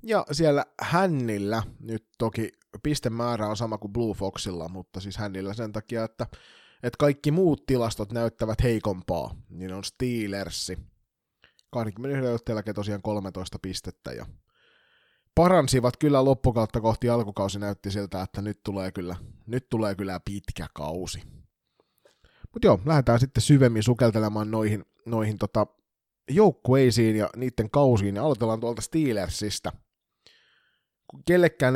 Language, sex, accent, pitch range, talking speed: Finnish, male, native, 100-120 Hz, 125 wpm